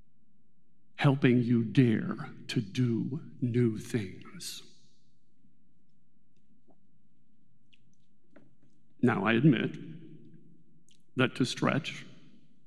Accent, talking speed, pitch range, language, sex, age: American, 60 wpm, 125-165 Hz, English, male, 50-69